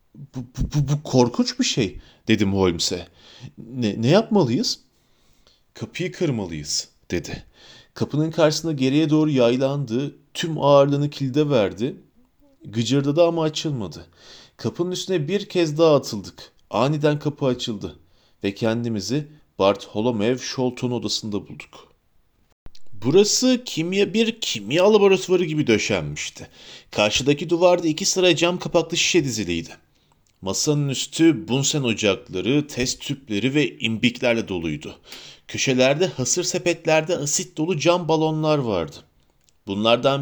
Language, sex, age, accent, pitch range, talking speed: Turkish, male, 40-59, native, 110-160 Hz, 115 wpm